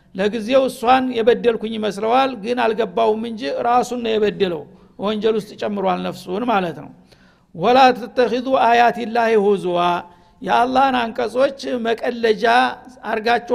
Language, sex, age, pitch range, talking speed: Amharic, male, 60-79, 215-245 Hz, 105 wpm